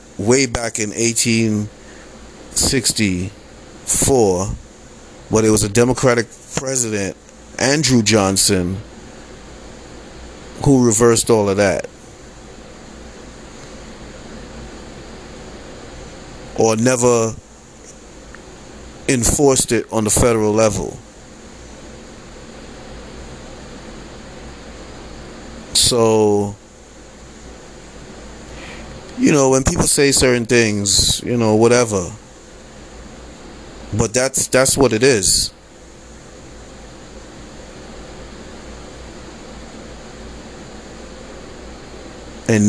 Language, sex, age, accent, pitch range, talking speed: English, male, 30-49, American, 105-125 Hz, 60 wpm